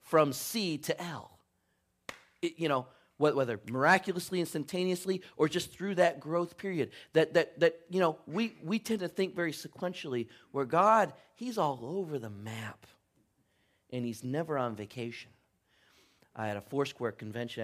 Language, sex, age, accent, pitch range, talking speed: English, male, 40-59, American, 105-160 Hz, 155 wpm